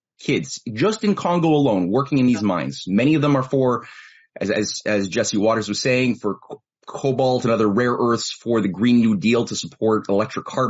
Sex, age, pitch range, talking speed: male, 30-49, 110-145 Hz, 210 wpm